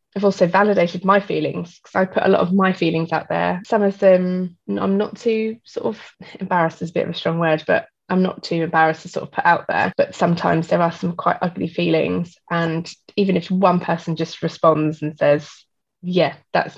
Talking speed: 220 wpm